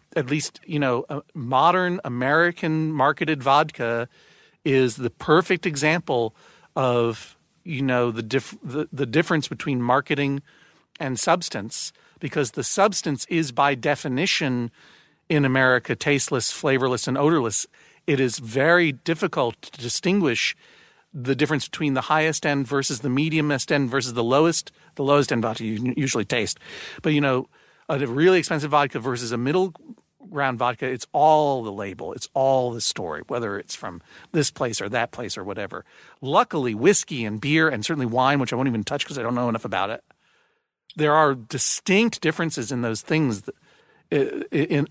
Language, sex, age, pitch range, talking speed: English, male, 50-69, 125-155 Hz, 160 wpm